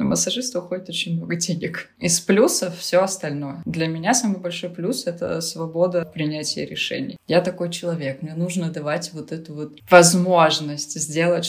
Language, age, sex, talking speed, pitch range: Russian, 20-39, female, 155 wpm, 150-175 Hz